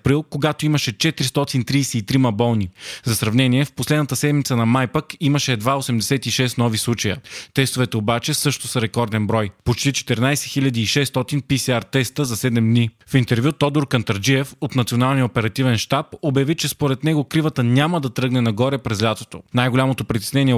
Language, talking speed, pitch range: Bulgarian, 145 wpm, 120-145 Hz